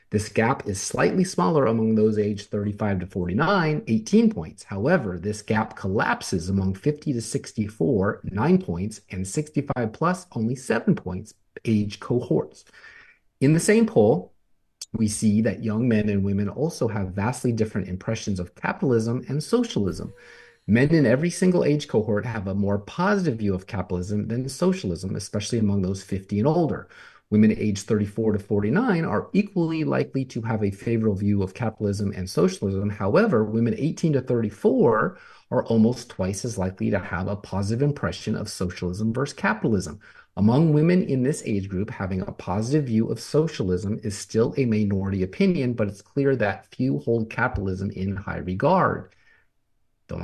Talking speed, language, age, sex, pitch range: 160 wpm, English, 30-49, male, 100-135 Hz